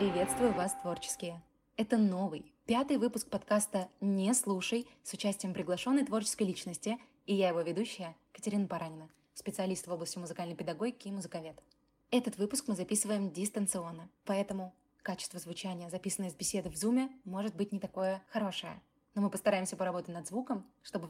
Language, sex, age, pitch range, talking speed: English, female, 20-39, 190-250 Hz, 150 wpm